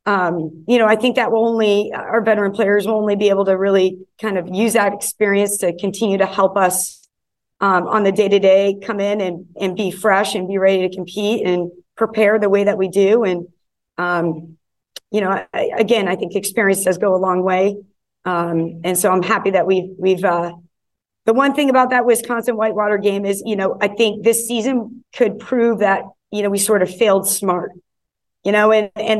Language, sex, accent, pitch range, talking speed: English, female, American, 185-220 Hz, 210 wpm